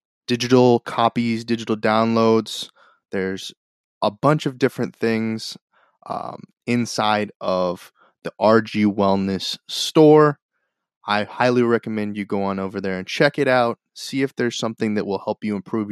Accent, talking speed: American, 145 wpm